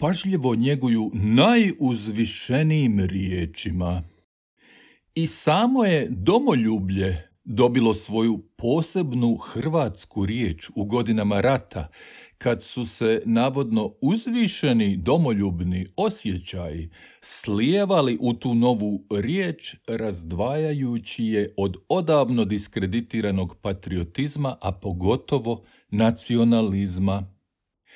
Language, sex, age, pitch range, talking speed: Croatian, male, 50-69, 95-135 Hz, 80 wpm